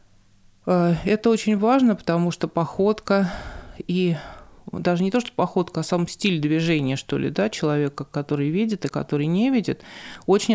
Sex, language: male, Russian